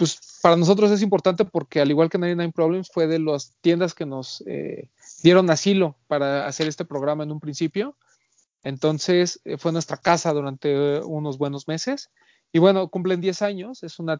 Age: 30-49